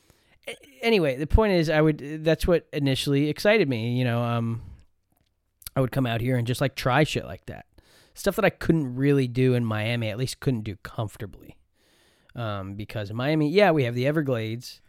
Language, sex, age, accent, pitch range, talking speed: English, male, 20-39, American, 110-145 Hz, 195 wpm